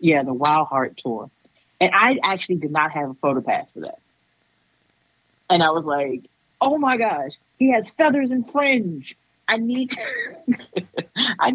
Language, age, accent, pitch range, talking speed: English, 30-49, American, 145-230 Hz, 150 wpm